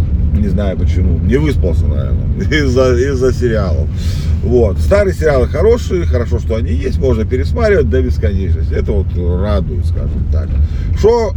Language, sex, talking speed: Russian, male, 140 wpm